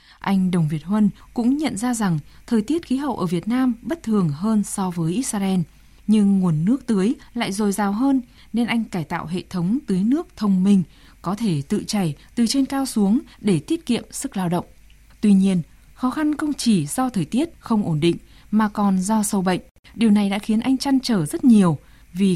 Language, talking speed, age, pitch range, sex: Vietnamese, 215 wpm, 20-39, 180-230 Hz, female